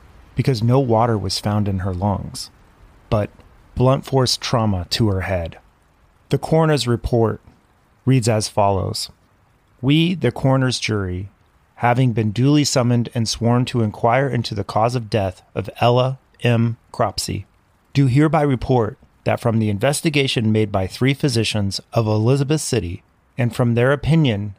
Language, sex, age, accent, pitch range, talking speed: English, male, 30-49, American, 105-135 Hz, 145 wpm